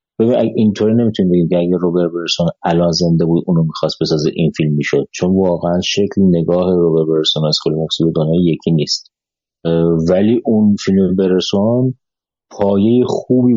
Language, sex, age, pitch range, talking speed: Persian, male, 30-49, 85-100 Hz, 150 wpm